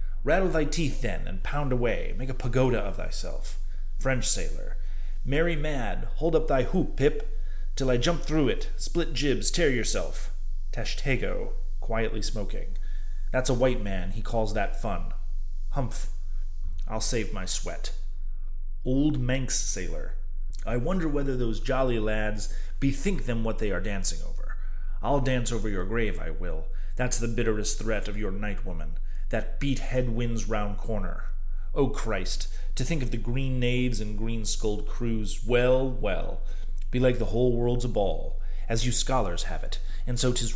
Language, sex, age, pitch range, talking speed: English, male, 30-49, 80-130 Hz, 160 wpm